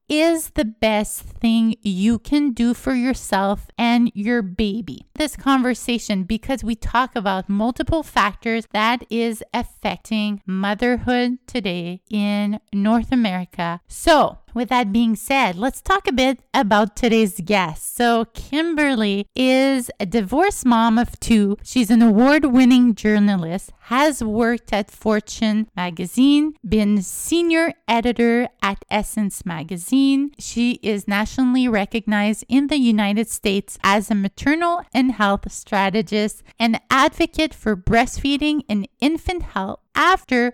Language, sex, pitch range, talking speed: English, female, 210-265 Hz, 125 wpm